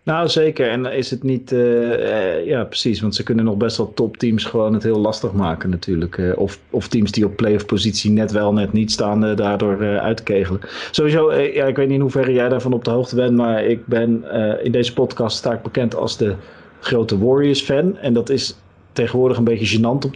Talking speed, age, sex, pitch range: 225 wpm, 40-59, male, 115-145 Hz